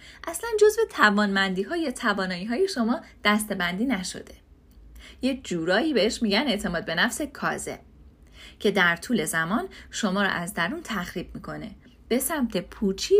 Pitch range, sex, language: 180-275 Hz, female, Persian